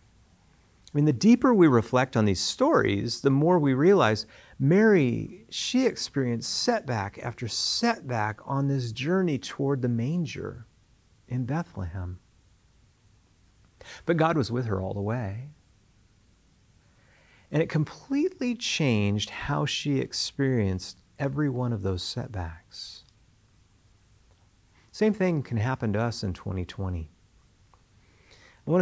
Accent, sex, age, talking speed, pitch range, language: American, male, 40-59, 120 wpm, 105-145 Hz, English